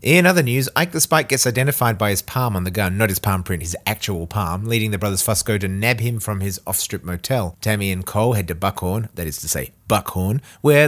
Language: English